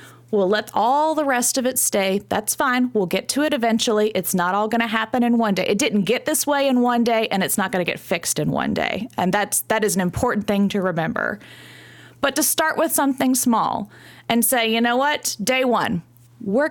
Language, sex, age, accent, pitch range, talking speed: English, female, 30-49, American, 180-245 Hz, 235 wpm